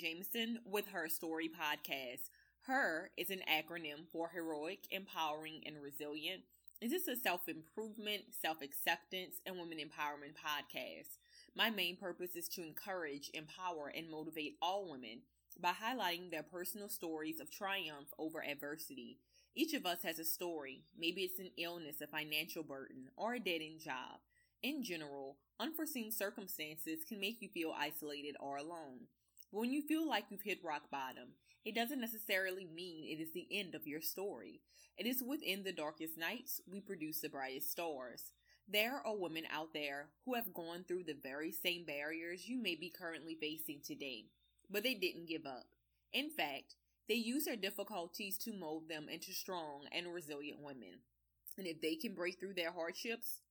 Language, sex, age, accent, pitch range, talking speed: English, female, 20-39, American, 155-200 Hz, 165 wpm